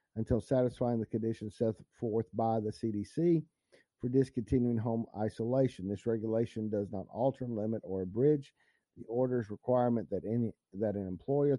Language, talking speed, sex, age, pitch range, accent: English, 145 wpm, male, 50-69, 110-130 Hz, American